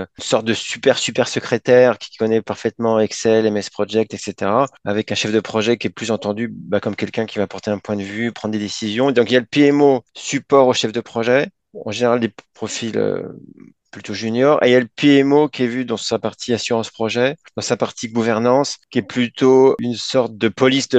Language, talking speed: French, 225 wpm